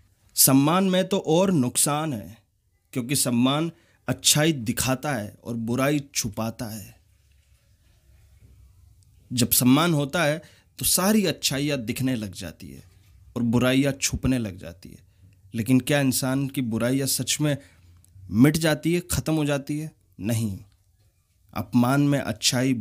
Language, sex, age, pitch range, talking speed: Hindi, male, 30-49, 100-130 Hz, 135 wpm